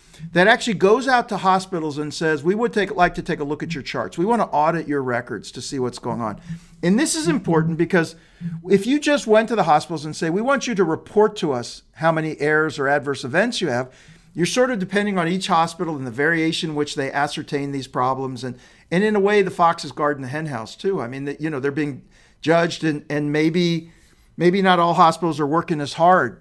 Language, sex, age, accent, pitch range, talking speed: English, male, 50-69, American, 150-195 Hz, 240 wpm